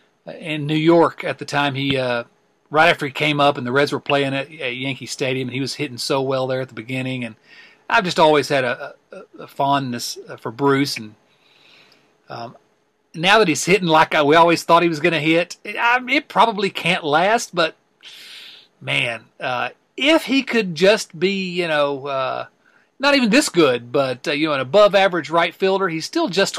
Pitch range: 135-195 Hz